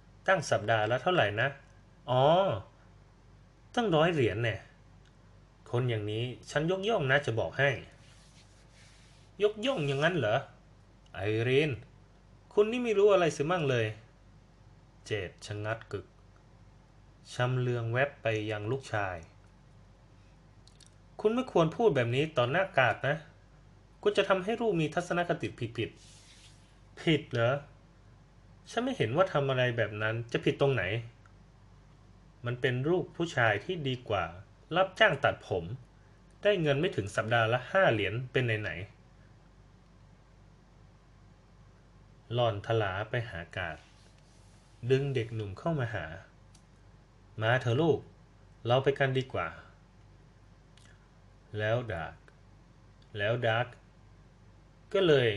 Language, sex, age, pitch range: Thai, male, 20-39, 105-140 Hz